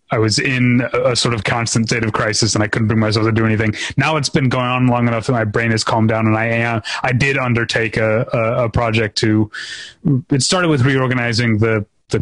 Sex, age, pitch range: male, 30-49, 110-130 Hz